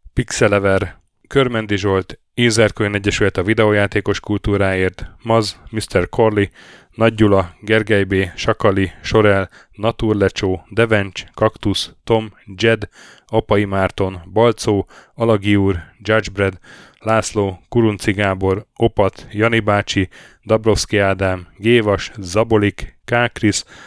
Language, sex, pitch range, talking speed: Hungarian, male, 95-110 Hz, 90 wpm